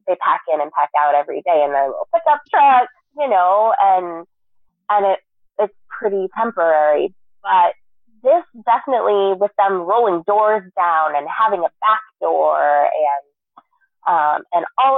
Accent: American